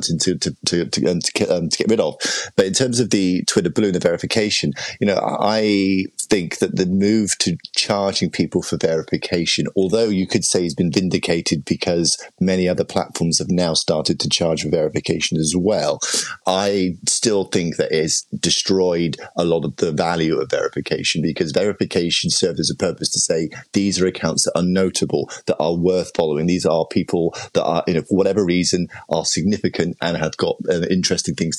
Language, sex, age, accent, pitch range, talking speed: English, male, 30-49, British, 85-95 Hz, 190 wpm